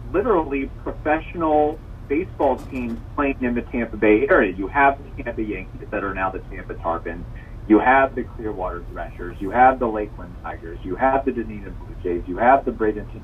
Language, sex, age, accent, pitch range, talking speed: English, male, 30-49, American, 105-135 Hz, 185 wpm